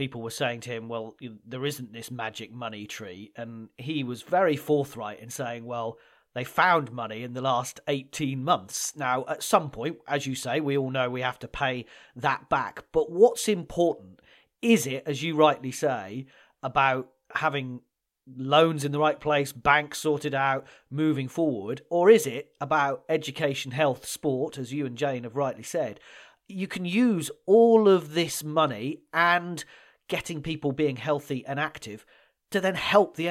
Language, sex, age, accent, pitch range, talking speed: English, male, 40-59, British, 130-170 Hz, 175 wpm